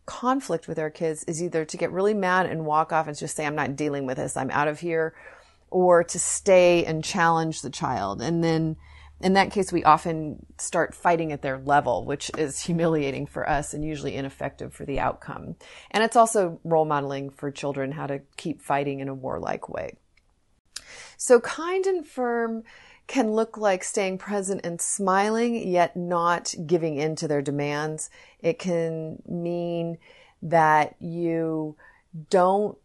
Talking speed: 170 wpm